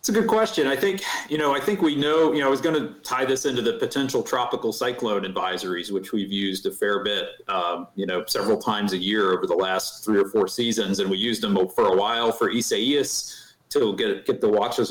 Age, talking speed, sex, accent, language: 40-59, 240 wpm, male, American, English